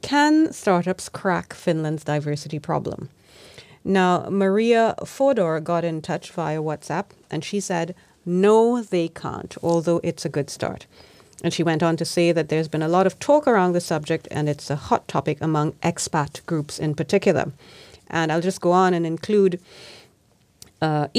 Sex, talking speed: female, 165 wpm